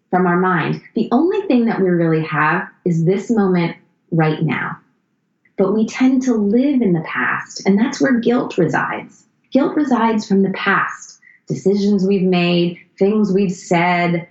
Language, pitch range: English, 170-215 Hz